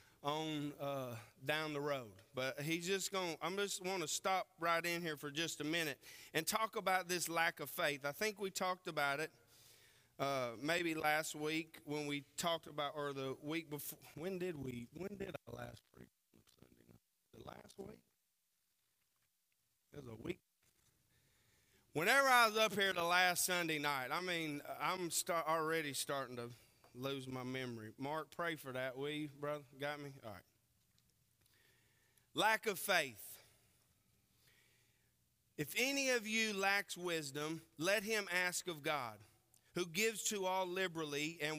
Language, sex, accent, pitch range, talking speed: English, male, American, 140-180 Hz, 155 wpm